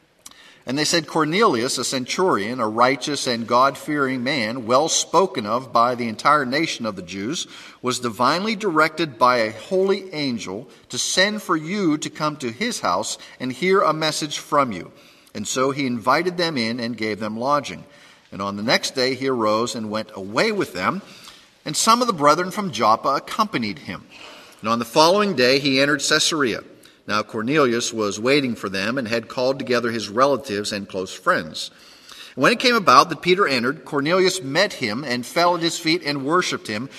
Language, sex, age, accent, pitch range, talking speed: English, male, 50-69, American, 120-170 Hz, 185 wpm